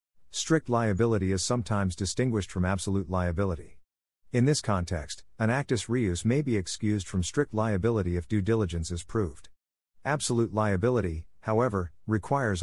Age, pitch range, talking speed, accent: 50-69, 90-115 Hz, 140 wpm, American